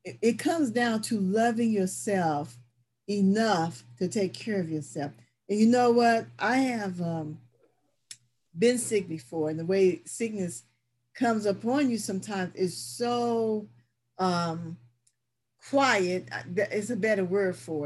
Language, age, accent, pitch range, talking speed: English, 50-69, American, 165-220 Hz, 135 wpm